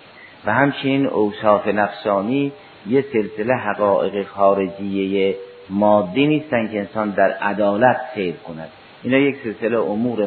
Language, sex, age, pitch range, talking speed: Persian, male, 50-69, 100-135 Hz, 115 wpm